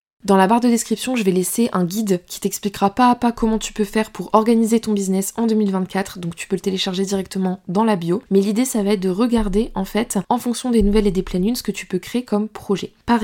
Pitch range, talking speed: 190-220 Hz, 265 wpm